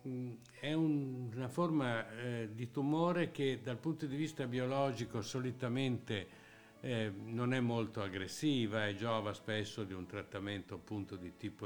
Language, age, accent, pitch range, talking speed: Italian, 60-79, native, 105-135 Hz, 145 wpm